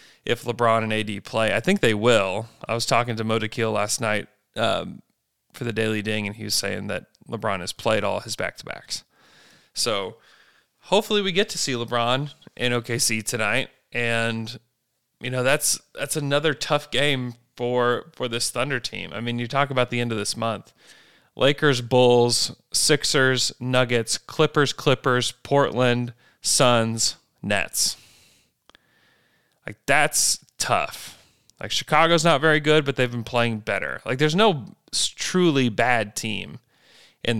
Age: 30-49